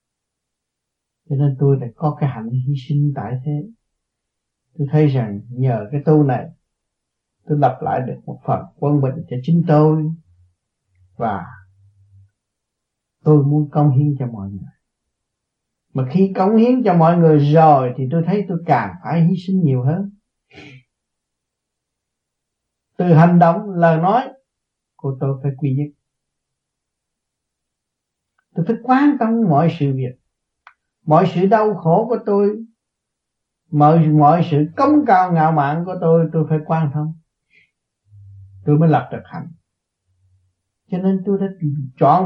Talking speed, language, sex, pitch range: 145 wpm, Vietnamese, male, 130-180 Hz